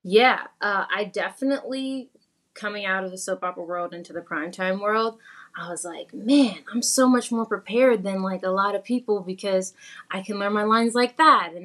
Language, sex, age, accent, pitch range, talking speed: English, female, 20-39, American, 180-225 Hz, 200 wpm